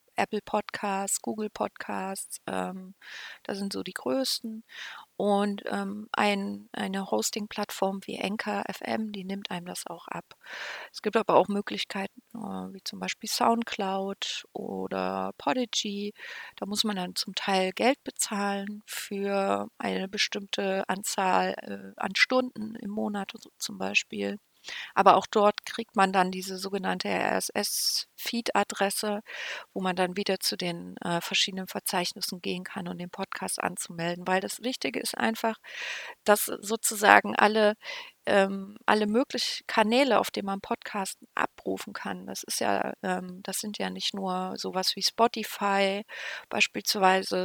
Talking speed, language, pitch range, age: 135 wpm, German, 185-215 Hz, 30-49